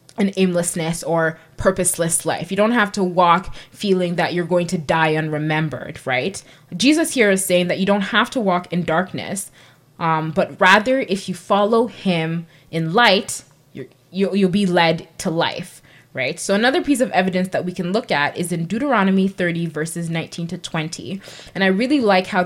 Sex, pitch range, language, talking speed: female, 160-190 Hz, English, 185 wpm